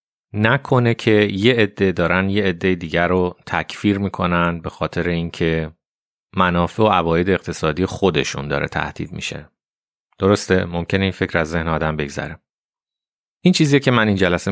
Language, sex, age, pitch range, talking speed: Persian, male, 30-49, 85-105 Hz, 150 wpm